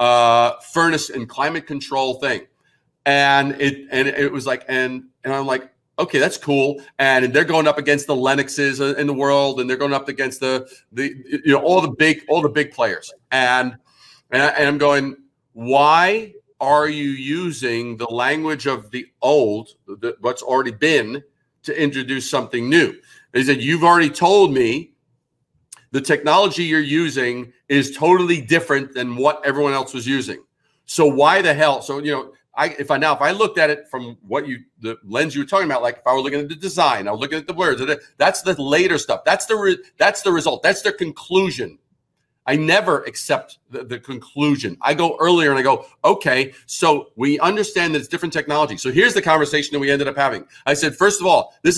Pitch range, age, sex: 130-155 Hz, 40-59, male